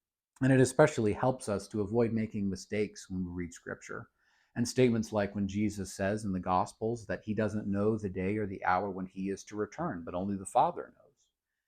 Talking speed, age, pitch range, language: 210 wpm, 40-59, 100-125 Hz, English